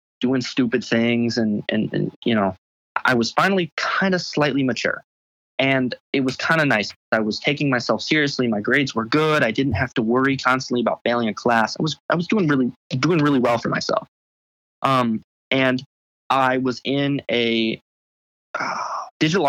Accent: American